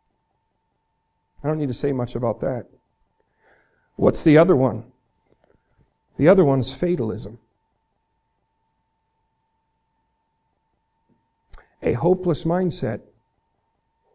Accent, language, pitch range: American, English, 140-185 Hz